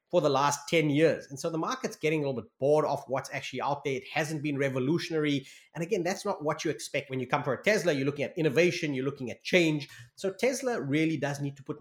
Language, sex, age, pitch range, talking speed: English, male, 30-49, 135-165 Hz, 260 wpm